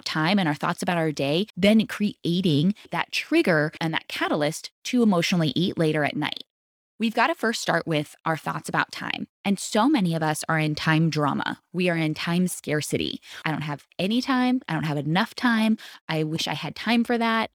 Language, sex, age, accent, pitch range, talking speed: English, female, 20-39, American, 160-215 Hz, 210 wpm